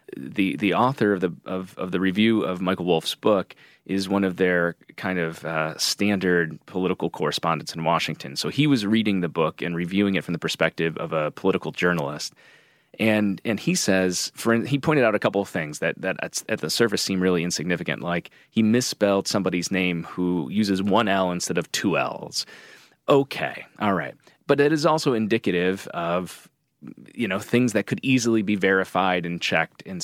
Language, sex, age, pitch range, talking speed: English, male, 30-49, 90-115 Hz, 190 wpm